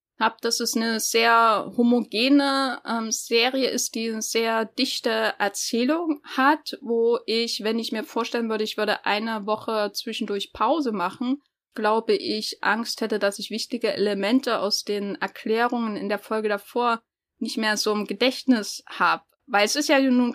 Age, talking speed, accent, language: 10-29, 160 wpm, German, German